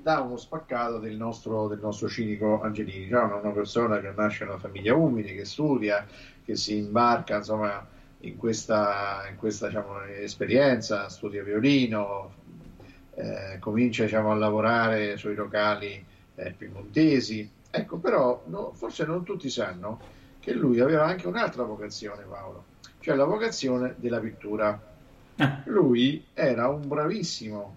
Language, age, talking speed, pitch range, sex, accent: Italian, 50-69, 140 wpm, 105-130 Hz, male, native